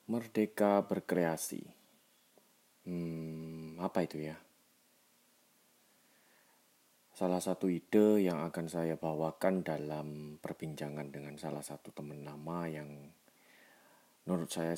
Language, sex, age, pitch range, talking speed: Indonesian, male, 30-49, 75-85 Hz, 95 wpm